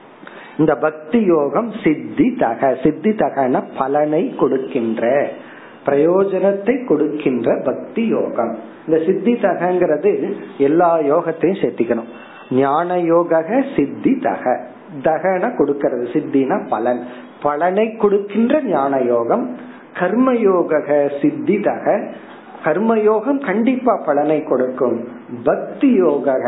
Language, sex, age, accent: Tamil, male, 50-69, native